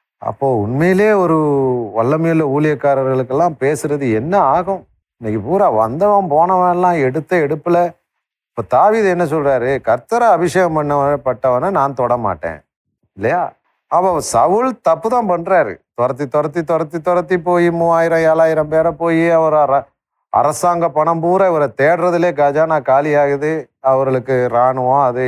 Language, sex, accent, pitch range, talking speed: Tamil, male, native, 120-170 Hz, 115 wpm